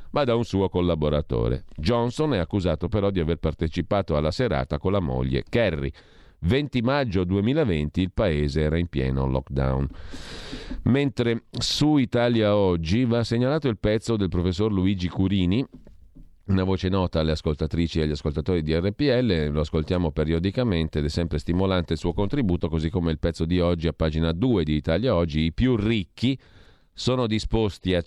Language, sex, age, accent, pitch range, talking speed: Italian, male, 40-59, native, 80-110 Hz, 165 wpm